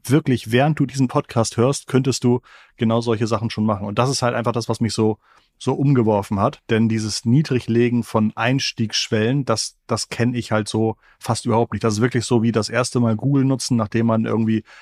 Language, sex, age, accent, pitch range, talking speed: German, male, 30-49, German, 115-135 Hz, 210 wpm